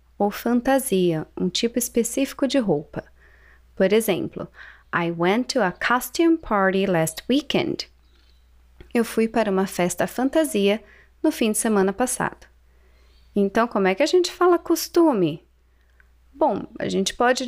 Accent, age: Brazilian, 20-39